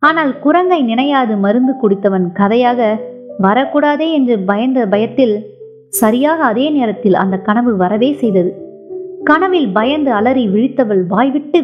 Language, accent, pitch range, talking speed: Tamil, native, 210-280 Hz, 115 wpm